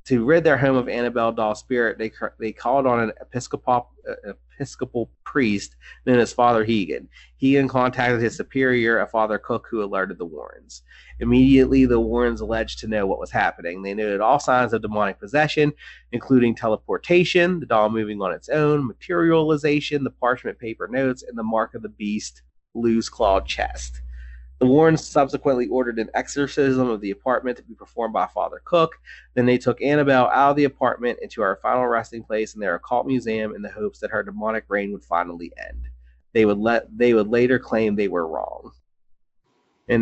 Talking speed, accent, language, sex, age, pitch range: 180 wpm, American, English, male, 30-49, 105-130 Hz